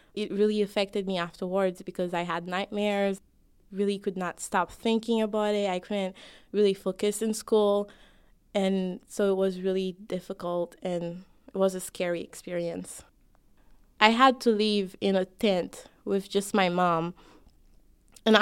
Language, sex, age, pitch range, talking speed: English, female, 20-39, 185-210 Hz, 150 wpm